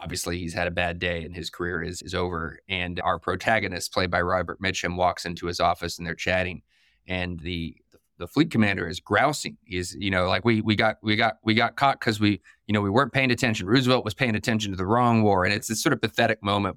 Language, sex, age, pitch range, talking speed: English, male, 20-39, 90-115 Hz, 245 wpm